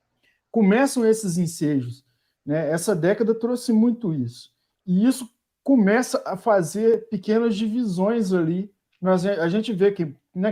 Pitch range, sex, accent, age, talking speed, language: 160-220 Hz, male, Brazilian, 50-69, 125 wpm, Portuguese